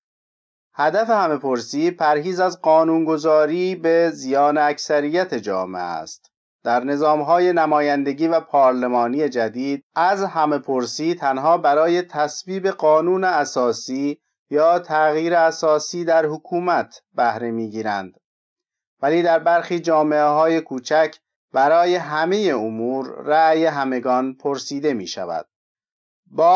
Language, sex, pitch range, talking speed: Persian, male, 135-175 Hz, 105 wpm